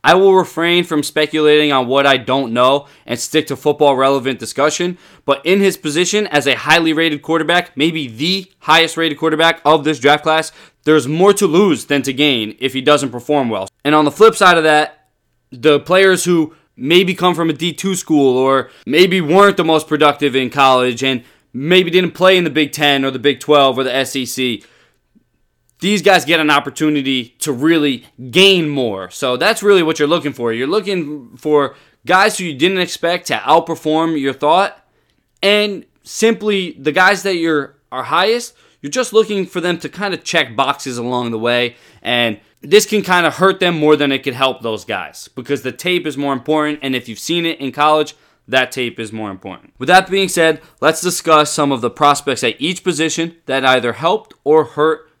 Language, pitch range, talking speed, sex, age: English, 135-175 Hz, 195 wpm, male, 20-39